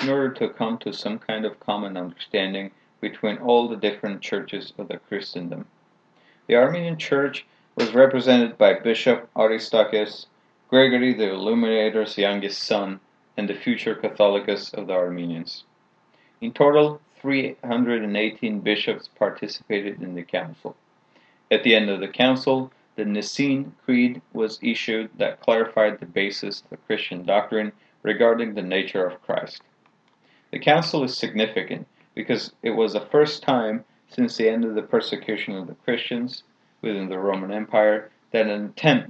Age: 30-49